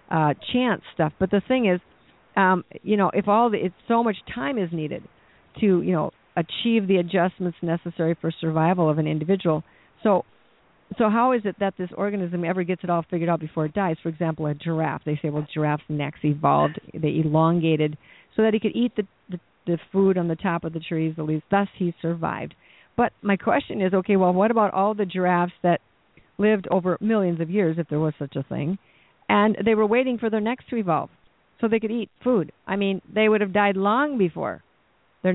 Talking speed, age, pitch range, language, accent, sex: 215 wpm, 50-69, 165-210 Hz, English, American, female